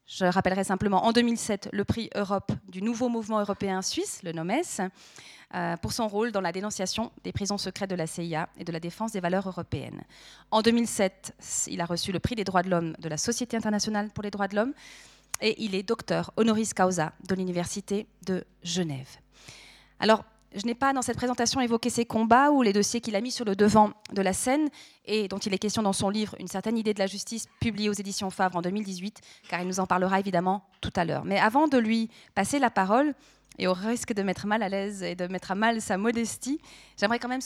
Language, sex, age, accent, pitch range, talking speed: French, female, 30-49, French, 190-235 Hz, 225 wpm